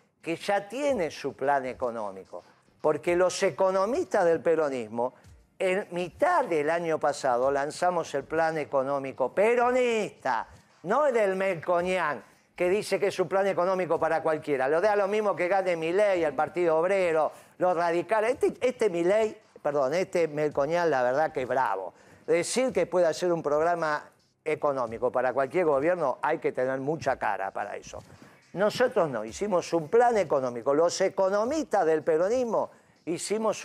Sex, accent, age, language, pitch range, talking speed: male, Argentinian, 50-69, Spanish, 155-220 Hz, 155 wpm